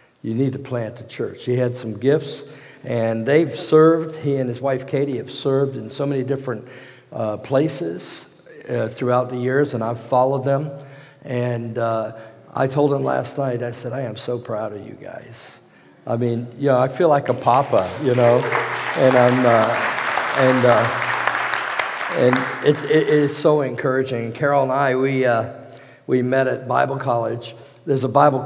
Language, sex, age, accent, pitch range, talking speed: English, male, 50-69, American, 115-140 Hz, 180 wpm